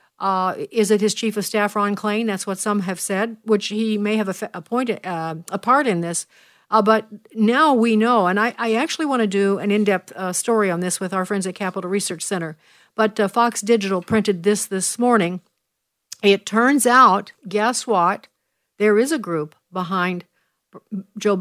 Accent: American